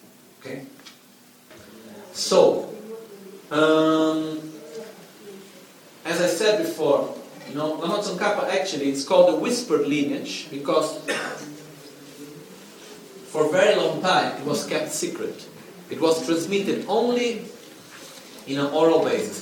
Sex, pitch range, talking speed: male, 145-205 Hz, 110 wpm